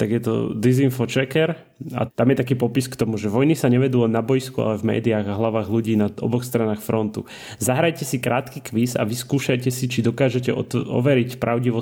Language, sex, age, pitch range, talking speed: Slovak, male, 30-49, 105-125 Hz, 205 wpm